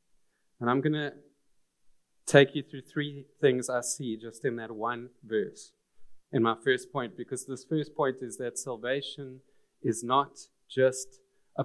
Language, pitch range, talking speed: English, 125-150 Hz, 160 wpm